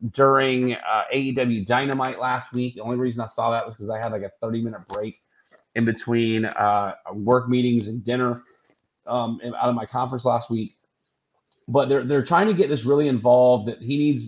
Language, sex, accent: English, male, American